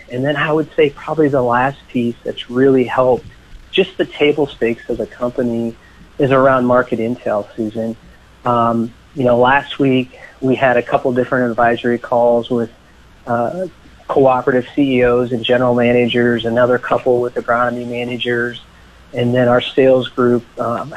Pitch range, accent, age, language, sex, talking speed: 120-135 Hz, American, 40-59, English, male, 155 wpm